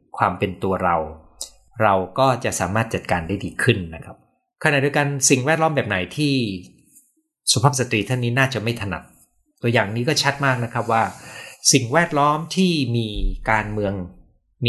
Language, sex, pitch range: Thai, male, 95-130 Hz